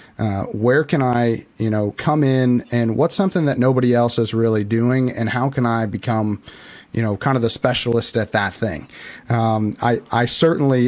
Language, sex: English, male